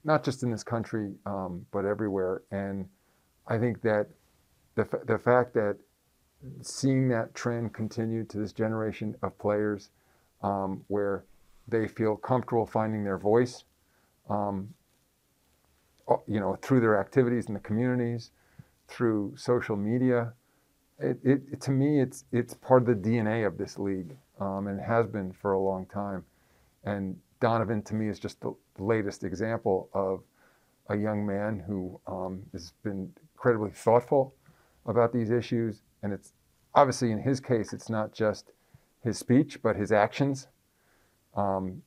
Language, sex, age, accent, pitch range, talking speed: English, male, 40-59, American, 100-120 Hz, 150 wpm